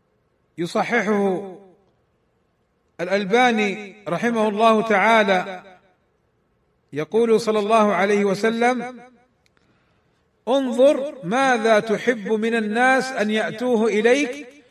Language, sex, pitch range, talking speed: Arabic, male, 205-250 Hz, 75 wpm